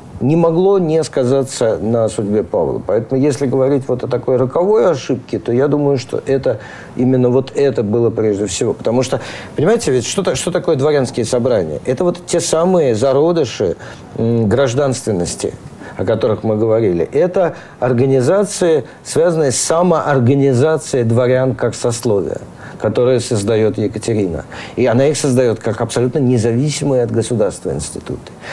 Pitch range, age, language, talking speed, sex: 115-150 Hz, 50-69, Russian, 140 wpm, male